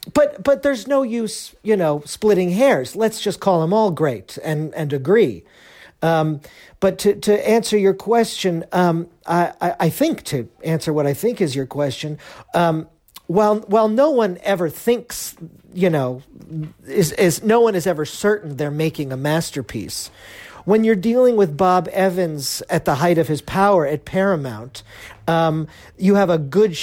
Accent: American